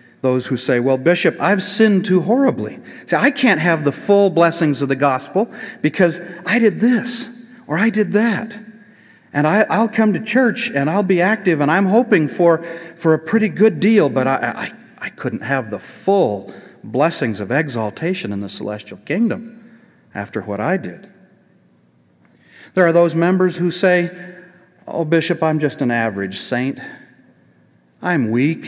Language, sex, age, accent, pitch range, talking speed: English, male, 50-69, American, 125-180 Hz, 165 wpm